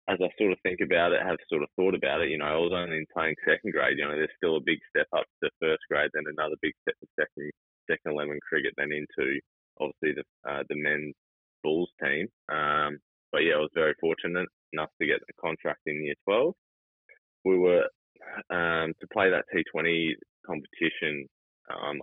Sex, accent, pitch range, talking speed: male, Australian, 70-80 Hz, 205 wpm